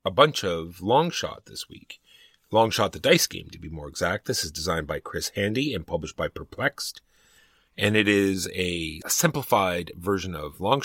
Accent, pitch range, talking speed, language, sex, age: American, 80-105 Hz, 190 wpm, English, male, 30-49